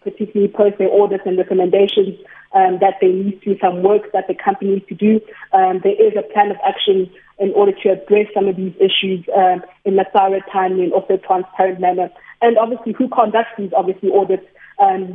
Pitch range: 195-220 Hz